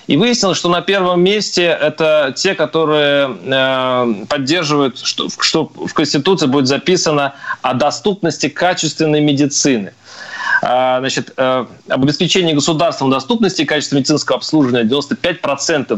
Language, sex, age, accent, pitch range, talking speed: Russian, male, 30-49, native, 135-180 Hz, 105 wpm